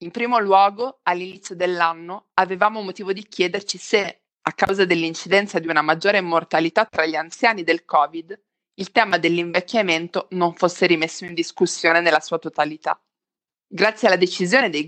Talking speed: 150 wpm